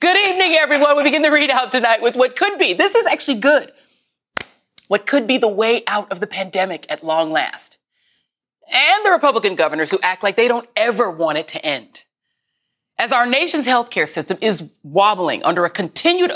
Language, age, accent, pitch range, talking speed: English, 30-49, American, 165-260 Hz, 190 wpm